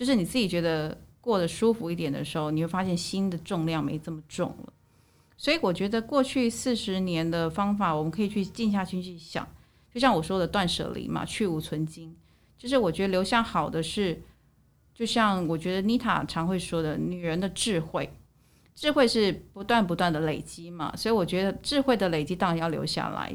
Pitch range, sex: 165-215 Hz, female